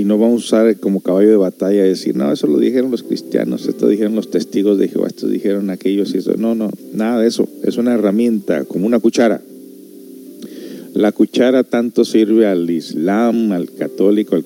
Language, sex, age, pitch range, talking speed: Spanish, male, 50-69, 90-110 Hz, 195 wpm